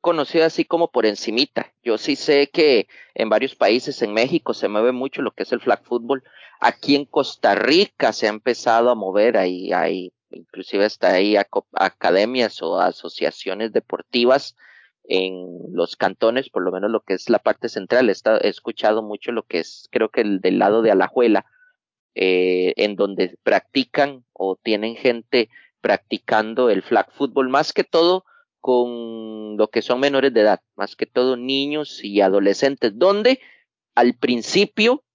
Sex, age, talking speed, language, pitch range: male, 30-49, 170 wpm, Spanish, 110-165 Hz